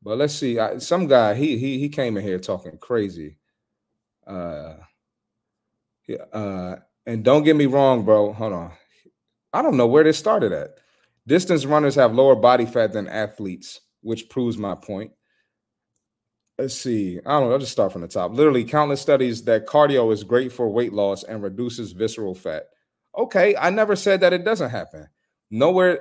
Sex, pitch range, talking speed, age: male, 110-145 Hz, 180 wpm, 30-49